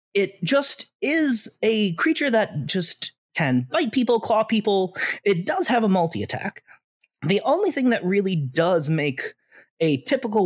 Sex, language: male, English